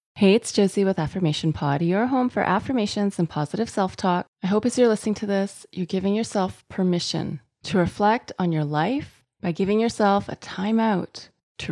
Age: 30-49